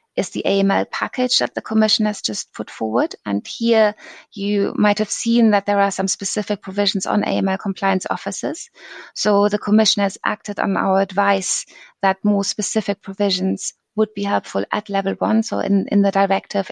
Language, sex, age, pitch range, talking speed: Dutch, female, 20-39, 190-205 Hz, 180 wpm